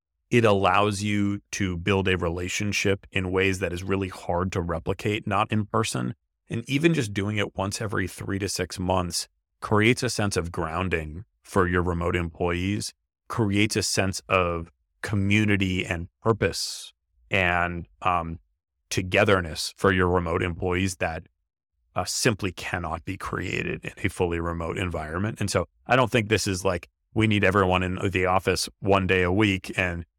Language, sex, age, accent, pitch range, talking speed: English, male, 30-49, American, 85-100 Hz, 165 wpm